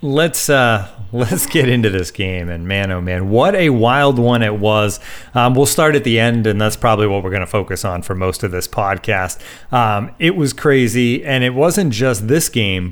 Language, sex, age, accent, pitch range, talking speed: English, male, 30-49, American, 110-140 Hz, 220 wpm